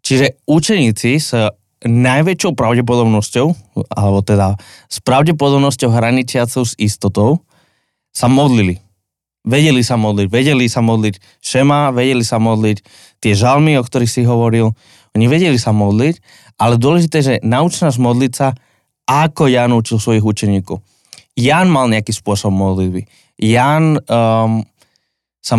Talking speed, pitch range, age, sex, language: 125 wpm, 105-130 Hz, 20-39, male, Slovak